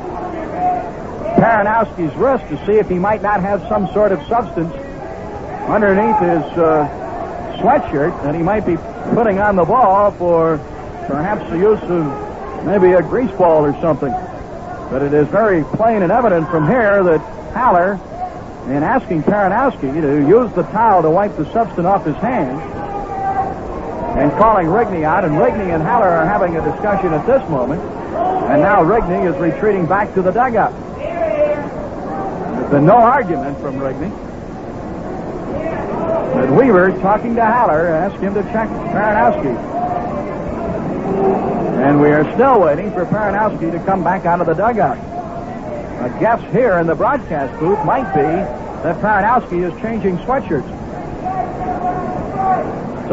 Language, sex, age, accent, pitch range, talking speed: English, male, 60-79, American, 165-215 Hz, 150 wpm